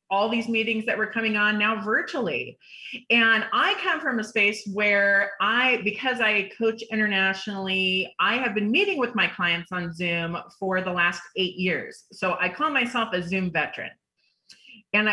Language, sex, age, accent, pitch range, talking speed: English, female, 30-49, American, 190-245 Hz, 170 wpm